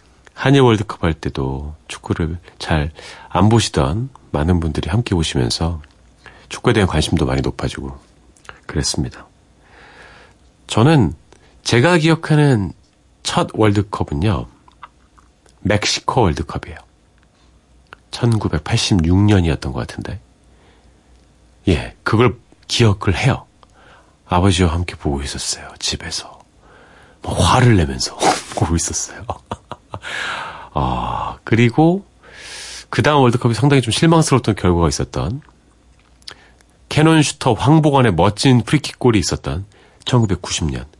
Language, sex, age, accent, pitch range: Korean, male, 40-59, native, 80-120 Hz